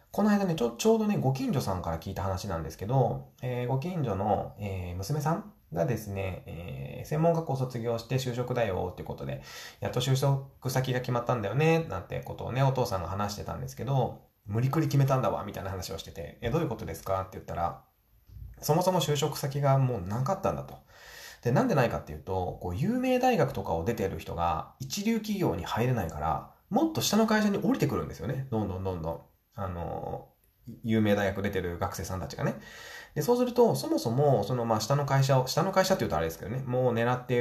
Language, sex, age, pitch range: Japanese, male, 20-39, 95-140 Hz